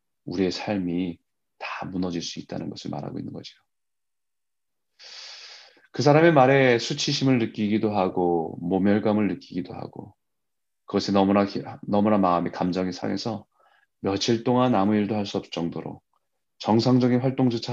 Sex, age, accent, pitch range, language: male, 30-49, native, 90-120 Hz, Korean